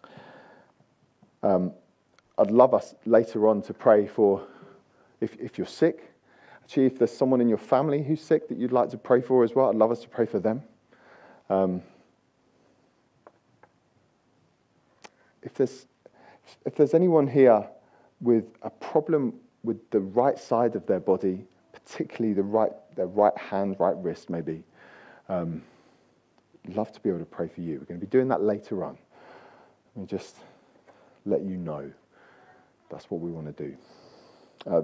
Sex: male